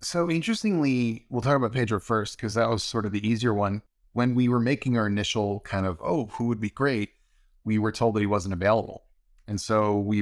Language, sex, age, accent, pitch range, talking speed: English, male, 30-49, American, 100-125 Hz, 225 wpm